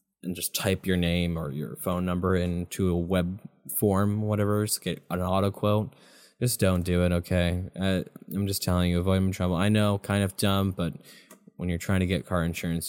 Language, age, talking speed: English, 10-29, 215 wpm